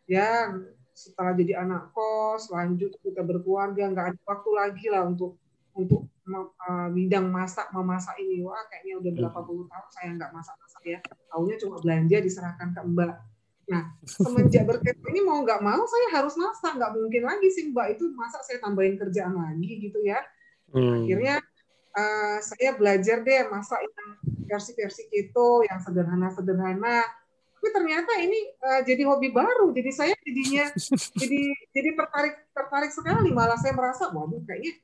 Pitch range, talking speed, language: 185-255 Hz, 155 wpm, Indonesian